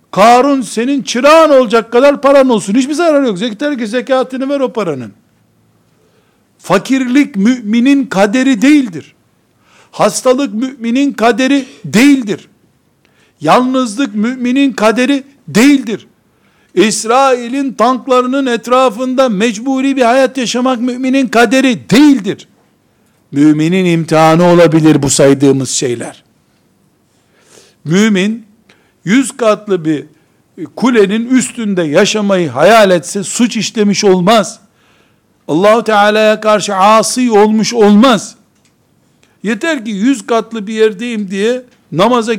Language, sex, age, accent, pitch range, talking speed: Turkish, male, 60-79, native, 205-260 Hz, 100 wpm